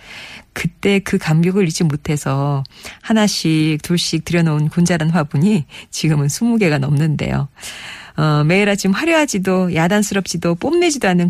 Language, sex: Korean, female